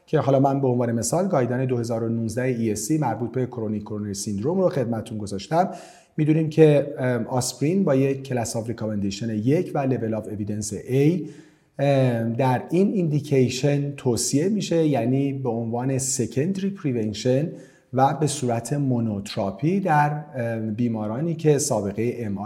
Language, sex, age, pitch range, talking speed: Persian, male, 40-59, 120-155 Hz, 135 wpm